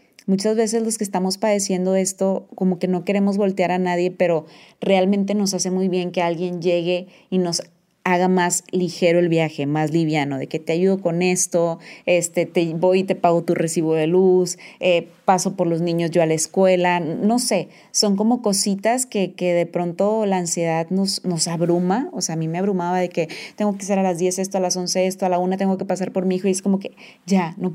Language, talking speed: Spanish, 225 wpm